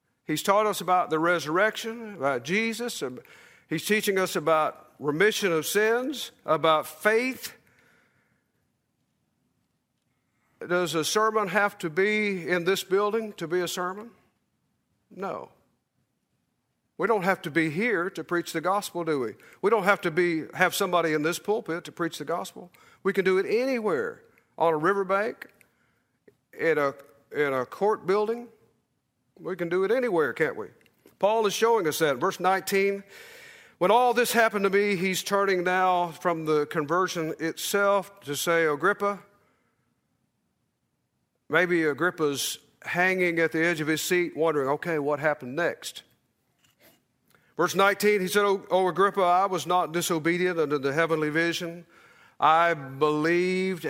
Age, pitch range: 50-69, 160-205 Hz